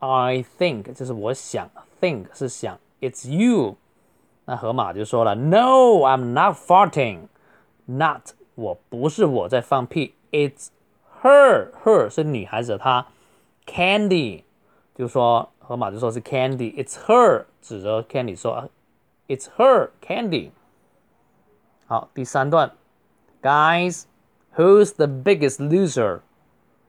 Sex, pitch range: male, 130-175 Hz